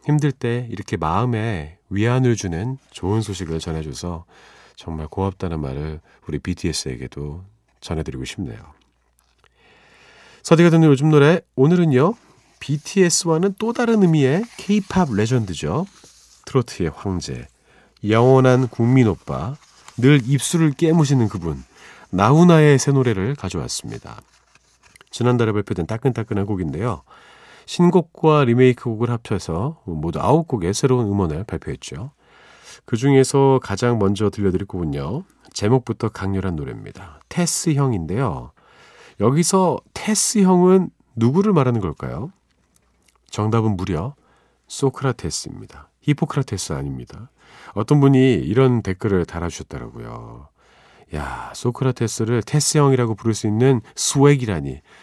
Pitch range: 95-140 Hz